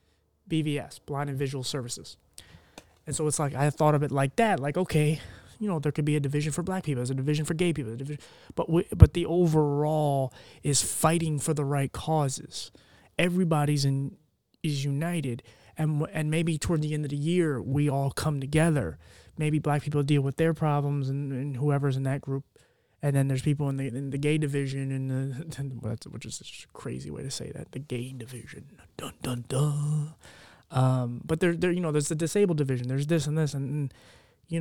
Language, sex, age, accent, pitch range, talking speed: English, male, 20-39, American, 130-150 Hz, 215 wpm